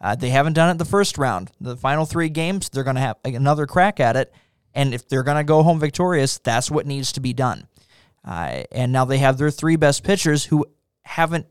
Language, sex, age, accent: English, male, 20-39, American